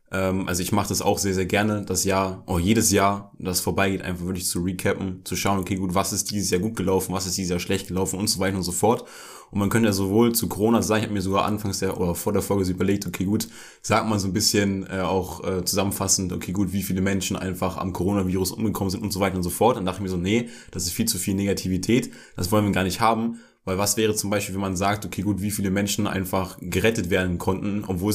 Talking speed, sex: 265 wpm, male